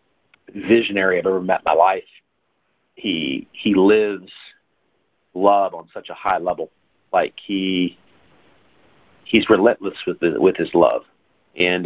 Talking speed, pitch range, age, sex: 135 wpm, 90-105 Hz, 40-59, male